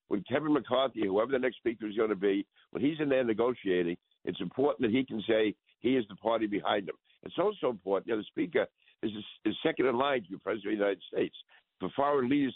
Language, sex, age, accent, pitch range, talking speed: English, male, 60-79, American, 105-130 Hz, 245 wpm